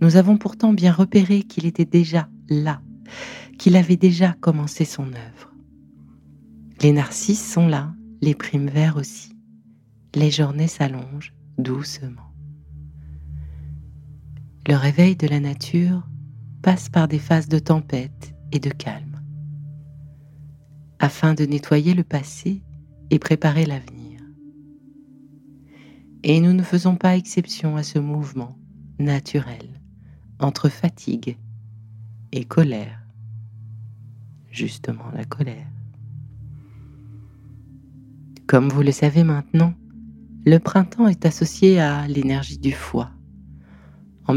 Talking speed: 110 wpm